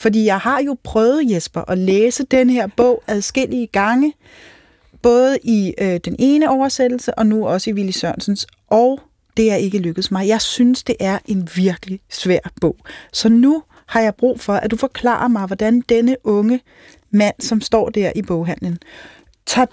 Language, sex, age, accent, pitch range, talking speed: Danish, female, 30-49, native, 195-245 Hz, 175 wpm